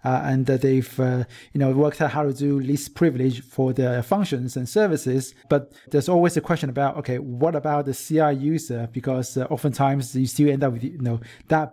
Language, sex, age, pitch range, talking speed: English, male, 30-49, 130-155 Hz, 220 wpm